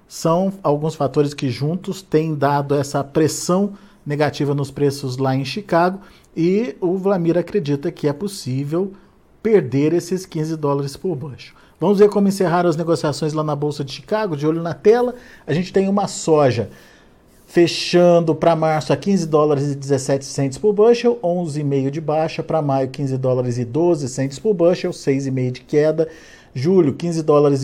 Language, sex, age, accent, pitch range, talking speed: Portuguese, male, 50-69, Brazilian, 140-180 Hz, 165 wpm